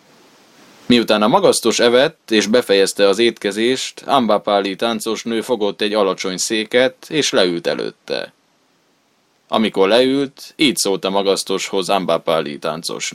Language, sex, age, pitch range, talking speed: Hungarian, male, 20-39, 100-120 Hz, 120 wpm